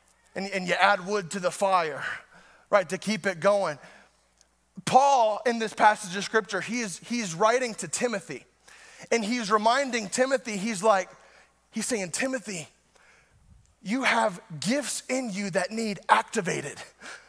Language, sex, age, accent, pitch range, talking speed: English, male, 20-39, American, 220-295 Hz, 140 wpm